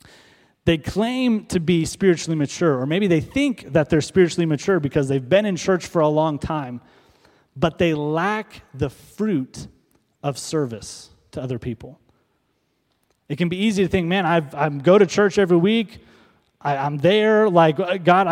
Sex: male